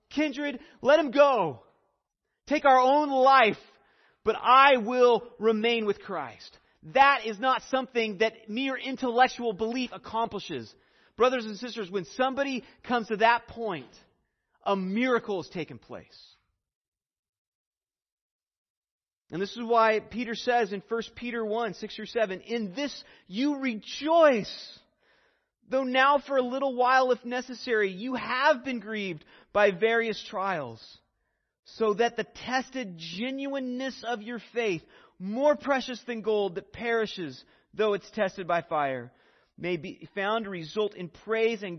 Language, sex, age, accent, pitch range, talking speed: English, male, 30-49, American, 200-260 Hz, 140 wpm